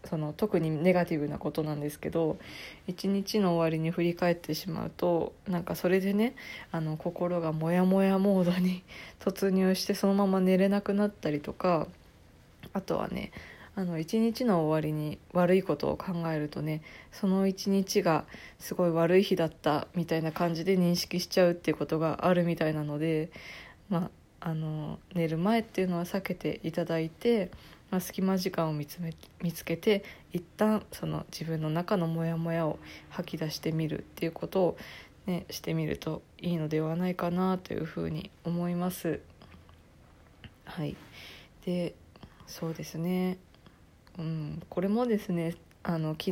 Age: 20-39